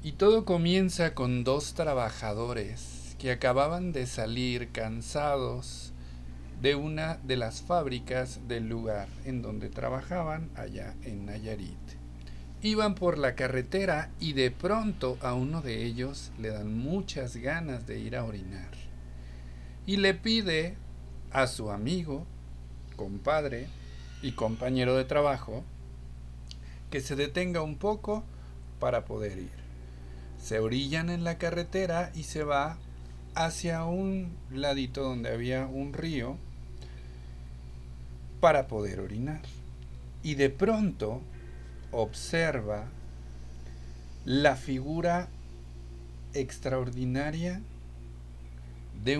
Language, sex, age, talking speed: Spanish, male, 50-69, 105 wpm